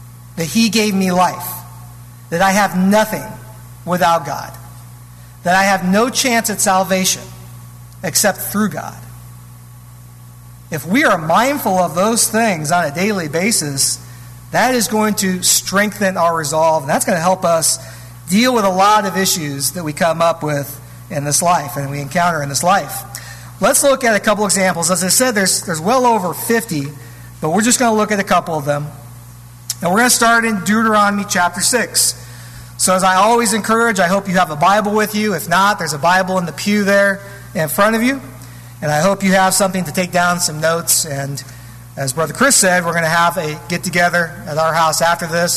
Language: English